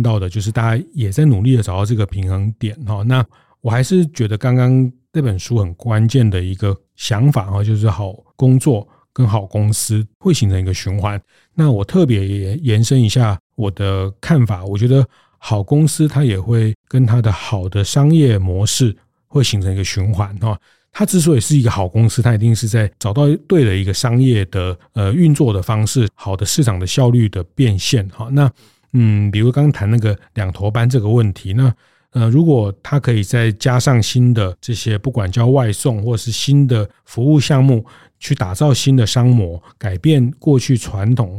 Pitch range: 100-130 Hz